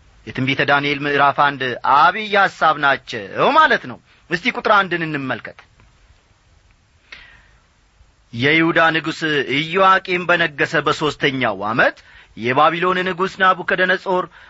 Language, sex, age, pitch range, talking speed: Amharic, male, 40-59, 130-205 Hz, 85 wpm